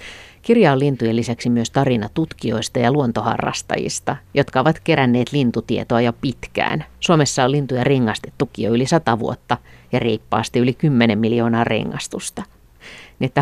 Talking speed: 125 wpm